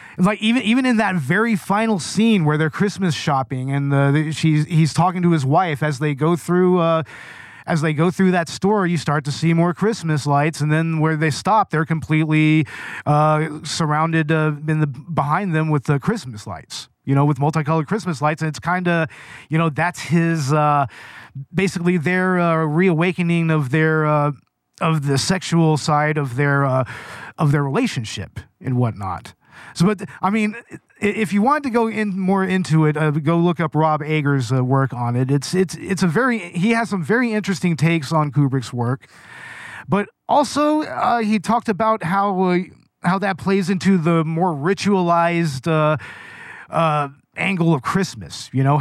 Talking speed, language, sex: 185 wpm, English, male